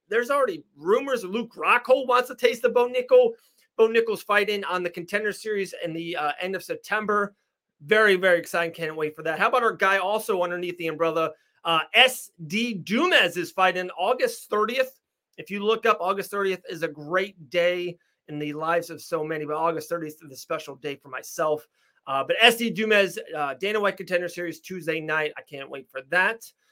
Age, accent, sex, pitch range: 30-49, American, male, 155-210 Hz